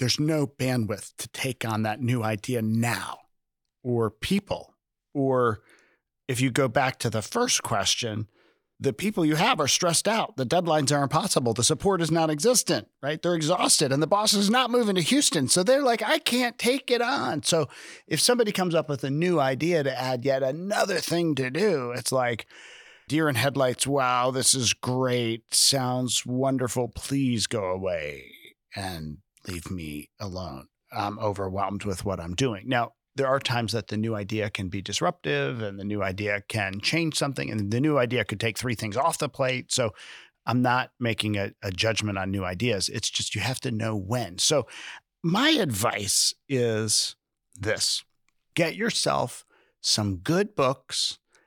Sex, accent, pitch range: male, American, 110-155 Hz